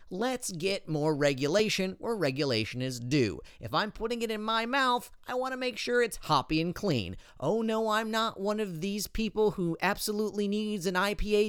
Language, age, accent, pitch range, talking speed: English, 30-49, American, 160-230 Hz, 195 wpm